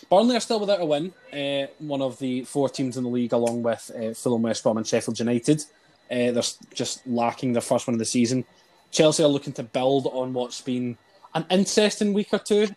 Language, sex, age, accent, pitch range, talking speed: English, male, 20-39, British, 120-150 Hz, 220 wpm